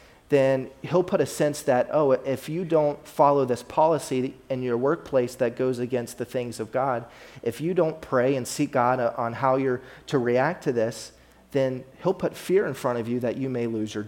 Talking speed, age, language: 215 wpm, 30-49, English